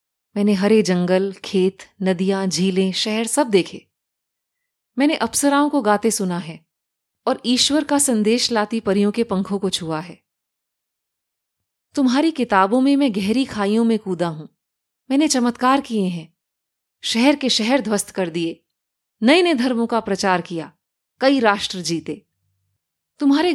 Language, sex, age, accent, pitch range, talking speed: Hindi, female, 30-49, native, 200-295 Hz, 140 wpm